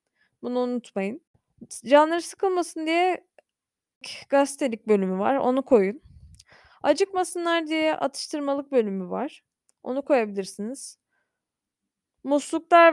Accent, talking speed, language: native, 85 wpm, Turkish